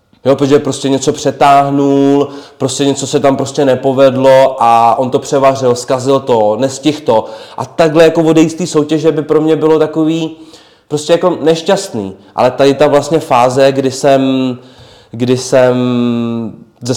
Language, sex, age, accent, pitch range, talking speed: Czech, male, 20-39, native, 115-140 Hz, 150 wpm